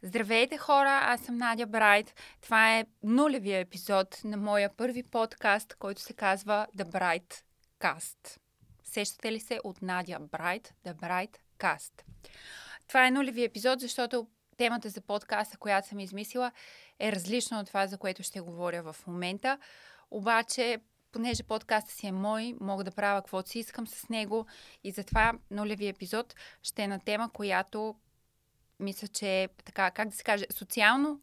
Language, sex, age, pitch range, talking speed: Bulgarian, female, 20-39, 195-240 Hz, 160 wpm